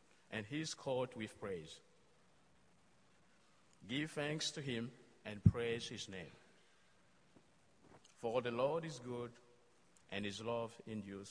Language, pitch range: English, 110-145 Hz